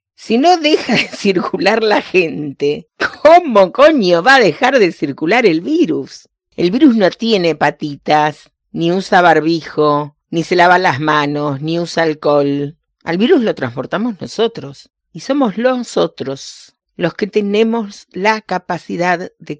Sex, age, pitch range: female, 40-59, 165-265 Hz